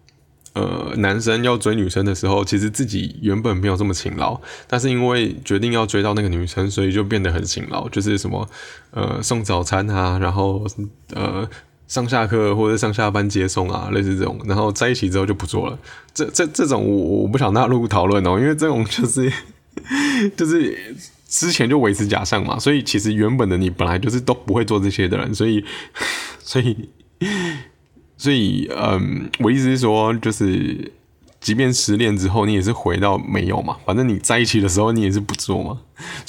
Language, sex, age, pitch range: Chinese, male, 20-39, 95-120 Hz